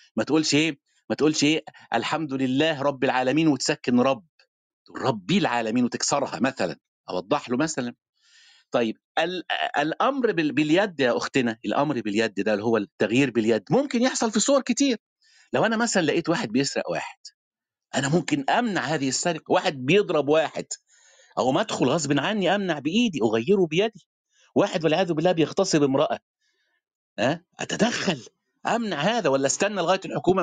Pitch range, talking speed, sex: 135-200 Hz, 145 wpm, male